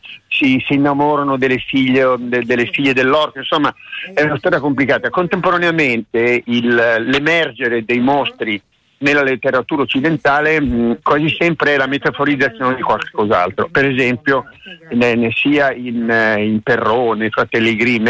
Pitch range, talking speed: 115-145 Hz, 120 wpm